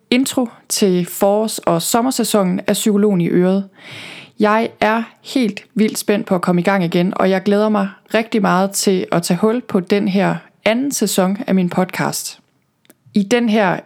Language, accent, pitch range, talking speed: Danish, native, 185-220 Hz, 180 wpm